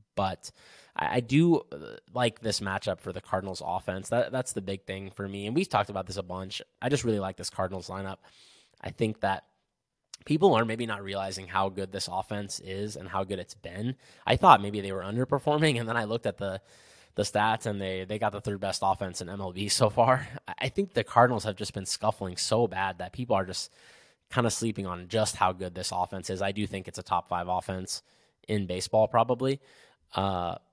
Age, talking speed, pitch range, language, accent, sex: 20-39, 215 wpm, 95-115 Hz, English, American, male